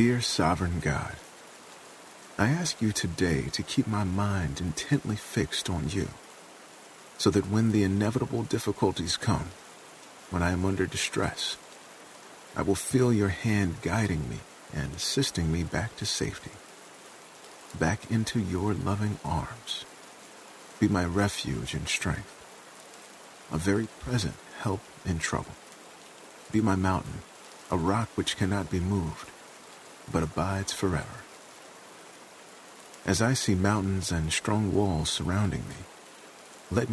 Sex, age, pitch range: male, 40-59, 90-105 Hz